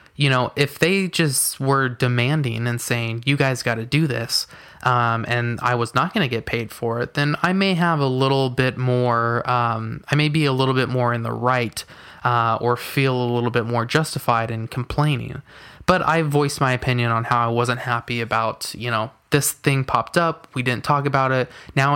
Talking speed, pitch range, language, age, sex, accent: 215 wpm, 120-145 Hz, English, 20-39, male, American